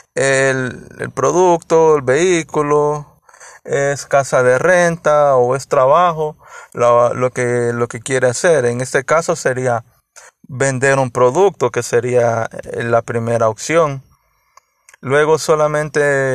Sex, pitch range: male, 125-150 Hz